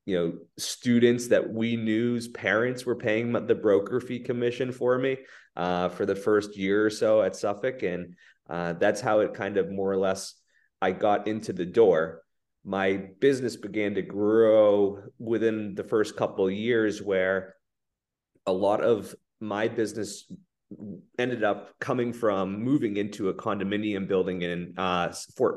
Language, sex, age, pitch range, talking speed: English, male, 30-49, 95-110 Hz, 160 wpm